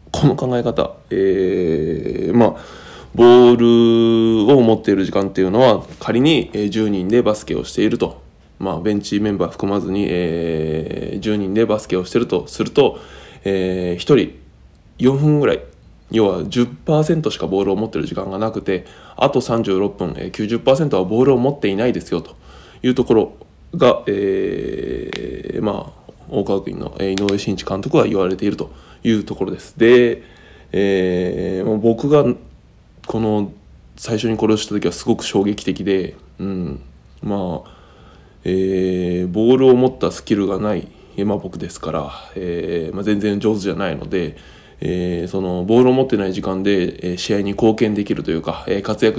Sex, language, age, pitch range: male, Japanese, 20-39, 95-120 Hz